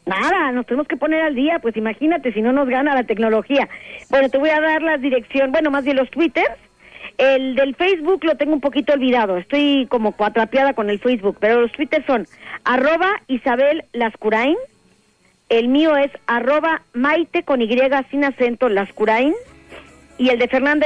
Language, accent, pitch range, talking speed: Spanish, Mexican, 230-290 Hz, 180 wpm